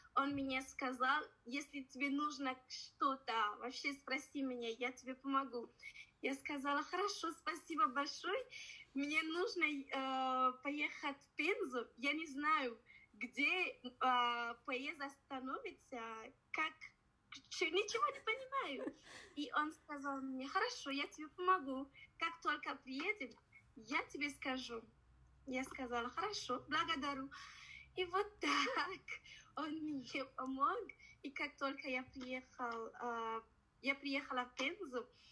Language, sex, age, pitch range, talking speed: Russian, female, 20-39, 255-310 Hz, 115 wpm